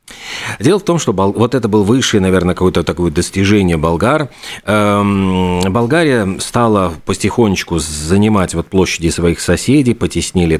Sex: male